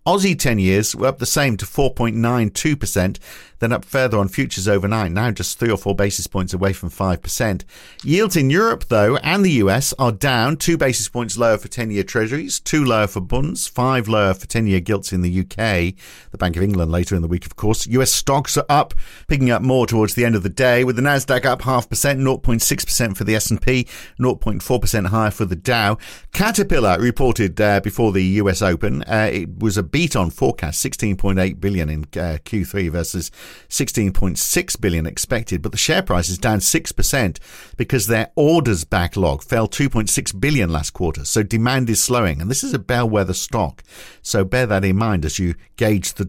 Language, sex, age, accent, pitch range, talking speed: English, male, 50-69, British, 95-130 Hz, 195 wpm